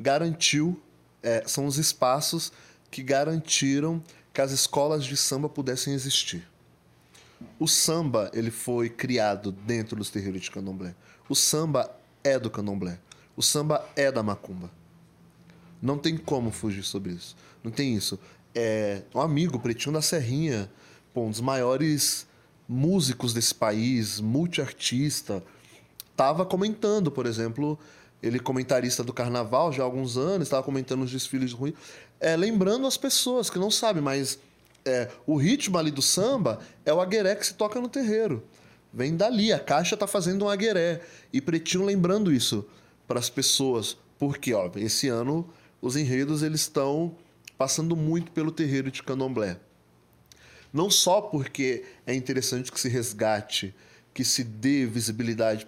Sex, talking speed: male, 150 wpm